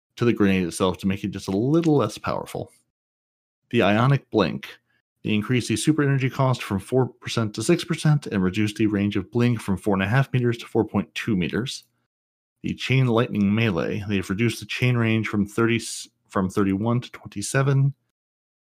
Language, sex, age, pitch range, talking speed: English, male, 30-49, 100-120 Hz, 185 wpm